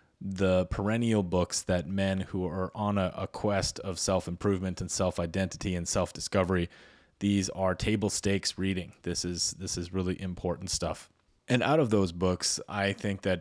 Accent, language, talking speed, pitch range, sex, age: American, English, 165 wpm, 90-100 Hz, male, 30-49